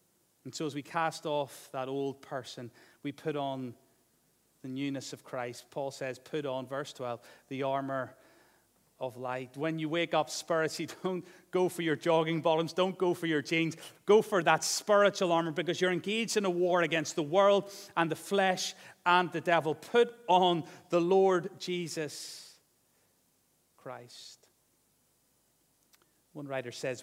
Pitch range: 130-175 Hz